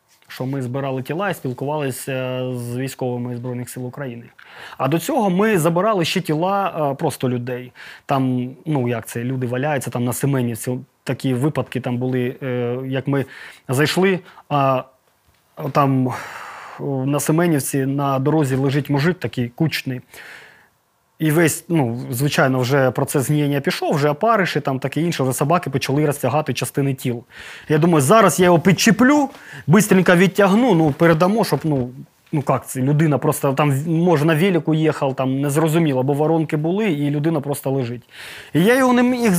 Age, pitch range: 20-39, 130-175 Hz